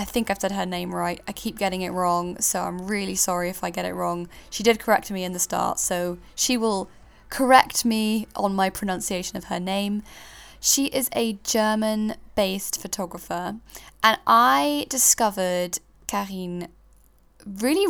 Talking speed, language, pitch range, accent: 170 wpm, English, 185-235 Hz, British